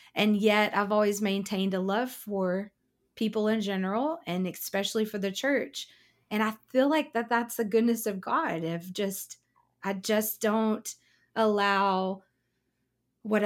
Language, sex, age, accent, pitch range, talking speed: English, female, 20-39, American, 185-215 Hz, 145 wpm